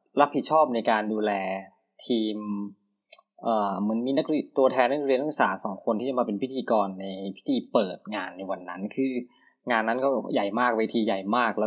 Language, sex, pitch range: Thai, male, 105-125 Hz